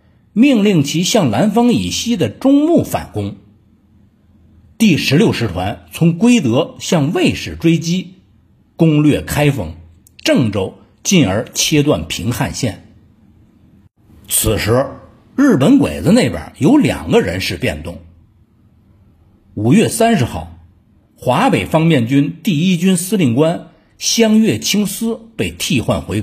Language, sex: Chinese, male